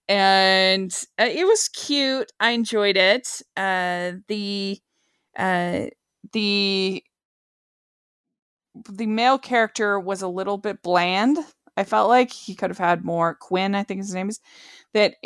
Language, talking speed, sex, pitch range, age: English, 140 wpm, female, 155-215 Hz, 20-39